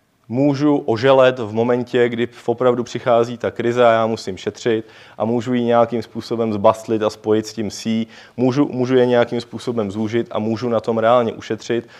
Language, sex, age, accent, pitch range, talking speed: Czech, male, 20-39, native, 110-135 Hz, 180 wpm